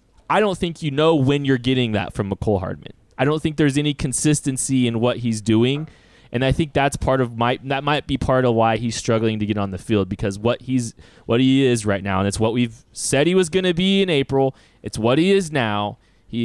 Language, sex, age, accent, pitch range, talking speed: English, male, 20-39, American, 115-175 Hz, 245 wpm